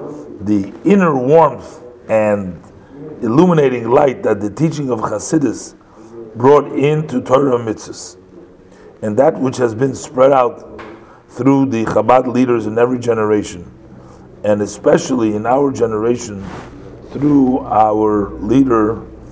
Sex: male